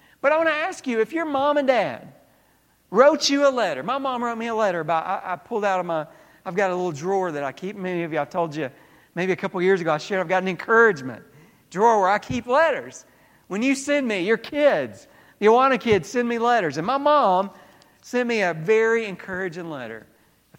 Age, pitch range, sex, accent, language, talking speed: 40-59, 185-285 Hz, male, American, English, 240 wpm